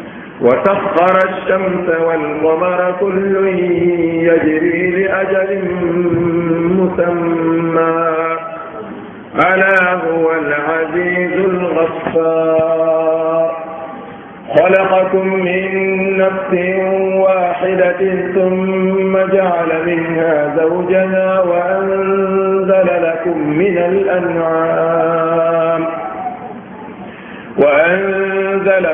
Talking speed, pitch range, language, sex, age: 50 wpm, 165-190 Hz, French, male, 50-69